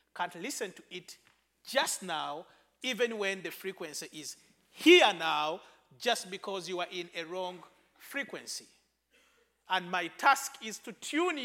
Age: 40-59